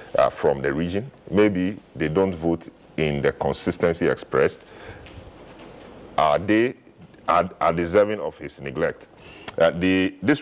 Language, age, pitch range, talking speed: English, 50-69, 75-95 Hz, 140 wpm